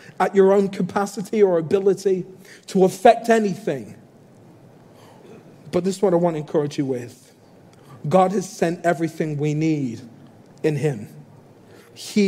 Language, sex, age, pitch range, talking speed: English, male, 40-59, 160-200 Hz, 135 wpm